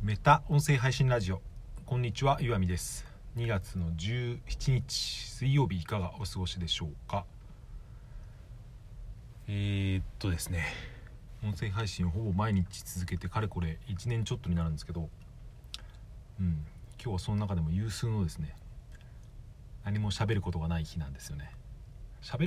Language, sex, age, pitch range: Japanese, male, 40-59, 85-115 Hz